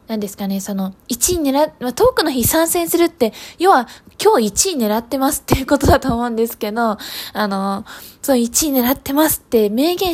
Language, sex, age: Japanese, female, 20-39